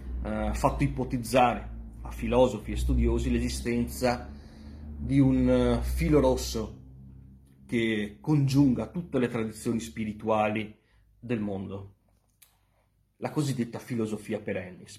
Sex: male